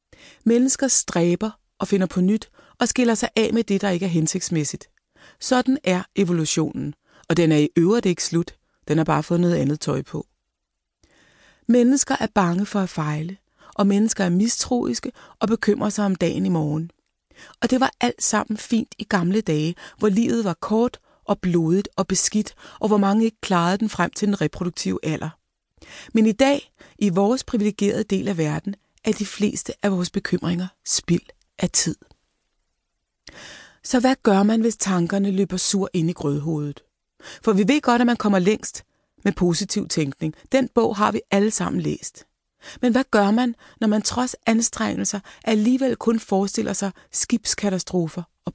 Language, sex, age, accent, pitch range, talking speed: Danish, female, 30-49, native, 175-225 Hz, 175 wpm